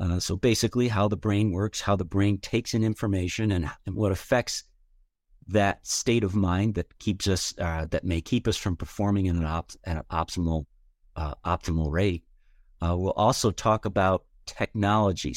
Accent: American